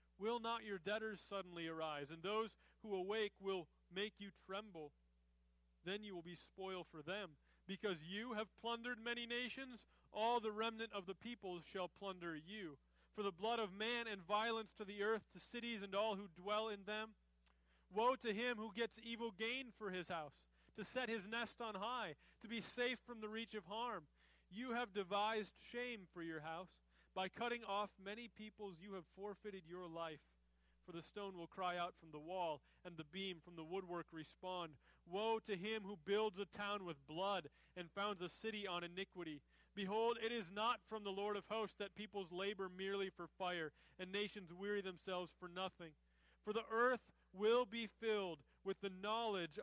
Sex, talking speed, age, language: male, 190 wpm, 30-49, English